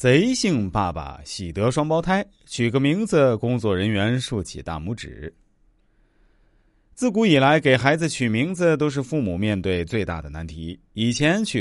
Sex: male